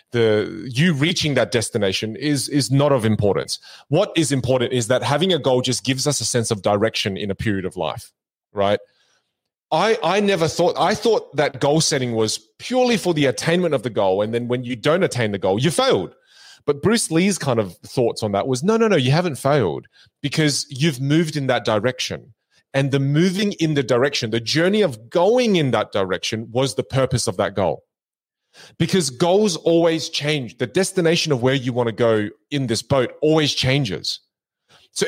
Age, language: 30-49, English